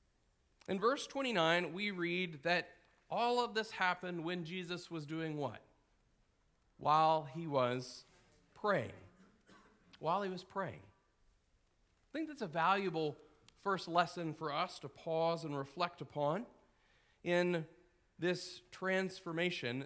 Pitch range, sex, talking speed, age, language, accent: 160-200 Hz, male, 120 wpm, 40-59, English, American